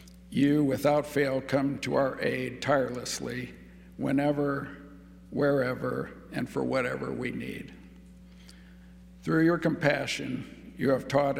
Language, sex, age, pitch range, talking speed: English, male, 60-79, 90-145 Hz, 110 wpm